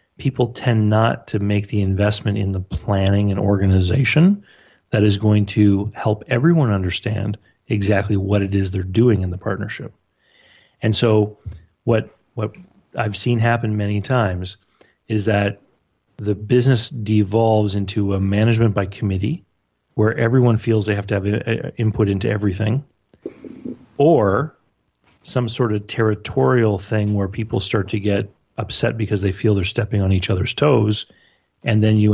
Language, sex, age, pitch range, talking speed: English, male, 30-49, 100-115 Hz, 150 wpm